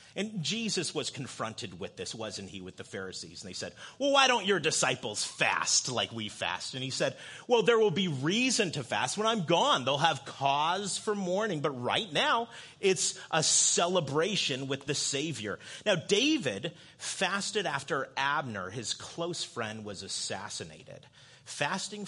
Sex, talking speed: male, 165 wpm